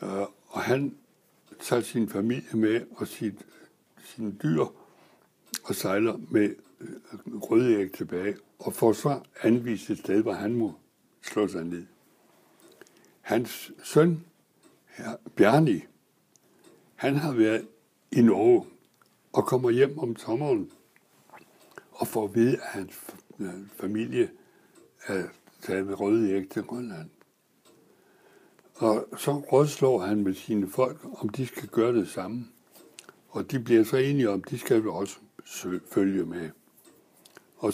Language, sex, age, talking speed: Danish, male, 60-79, 130 wpm